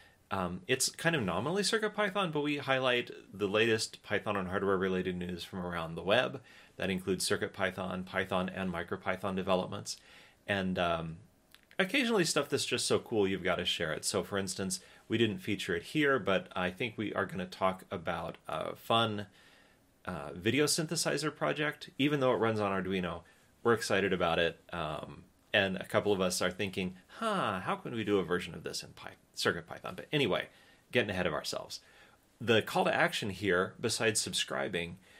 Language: English